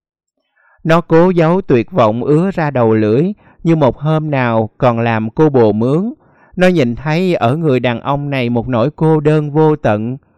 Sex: male